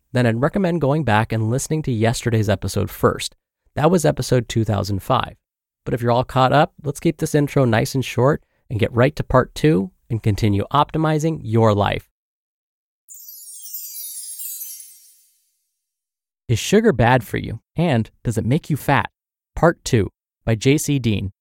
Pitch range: 110-155 Hz